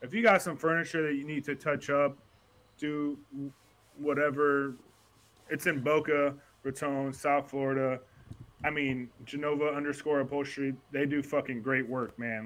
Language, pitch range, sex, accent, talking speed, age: English, 125-145 Hz, male, American, 145 wpm, 20-39